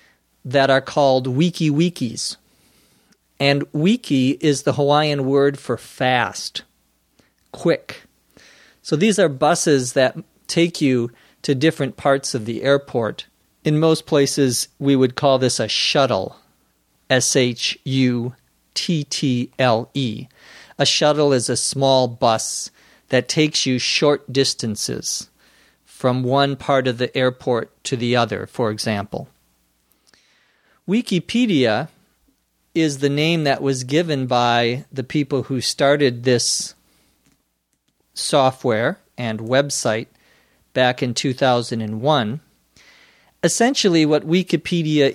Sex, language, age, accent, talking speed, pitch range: male, Portuguese, 50-69, American, 105 wpm, 125-145 Hz